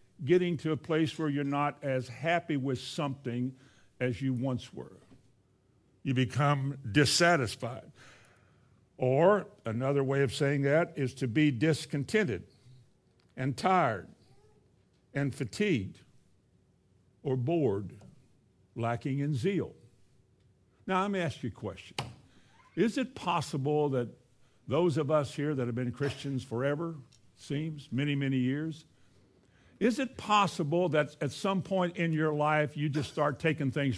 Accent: American